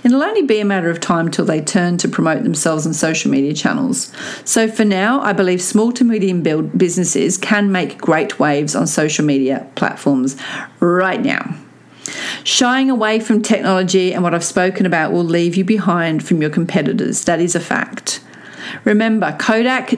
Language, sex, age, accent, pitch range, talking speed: English, female, 40-59, Australian, 175-230 Hz, 175 wpm